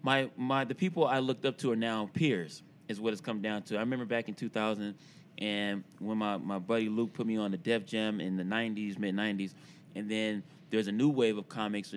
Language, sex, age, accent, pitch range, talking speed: English, male, 20-39, American, 105-145 Hz, 230 wpm